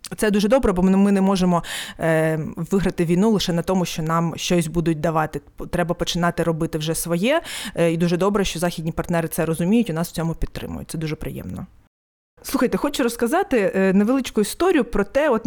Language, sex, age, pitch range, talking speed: Ukrainian, female, 20-39, 175-225 Hz, 180 wpm